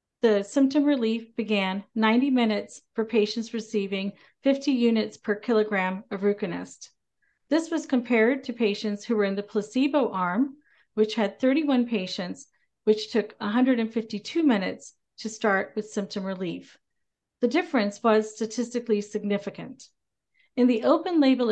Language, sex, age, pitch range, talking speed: English, female, 40-59, 205-250 Hz, 135 wpm